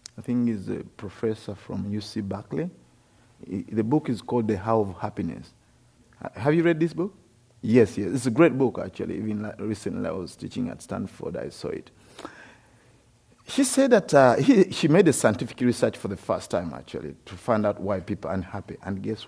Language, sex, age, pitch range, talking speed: English, male, 50-69, 105-140 Hz, 195 wpm